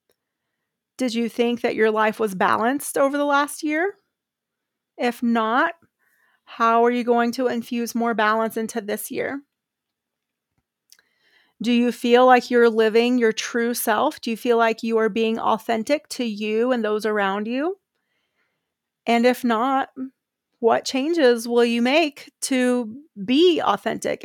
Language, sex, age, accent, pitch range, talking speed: English, female, 30-49, American, 225-255 Hz, 145 wpm